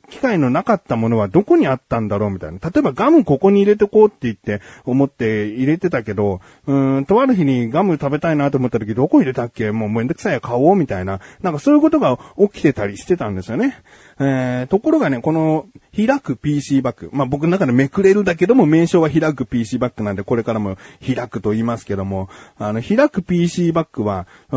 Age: 40-59